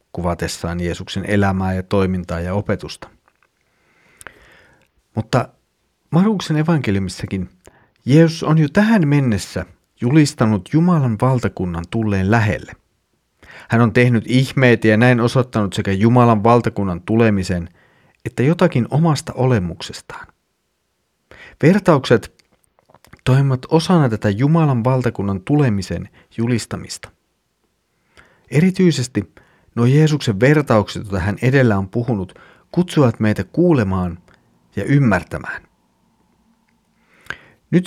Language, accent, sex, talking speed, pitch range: Finnish, native, male, 90 wpm, 100-145 Hz